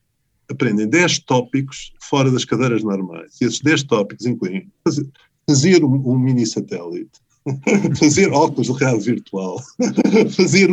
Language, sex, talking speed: Portuguese, male, 130 wpm